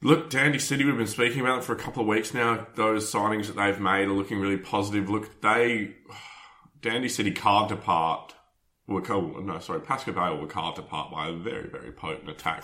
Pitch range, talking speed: 95-120 Hz, 210 wpm